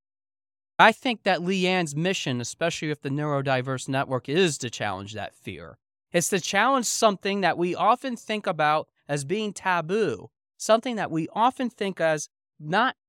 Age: 20-39